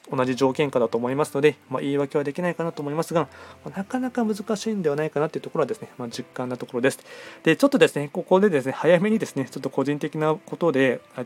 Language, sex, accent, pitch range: Japanese, male, native, 130-160 Hz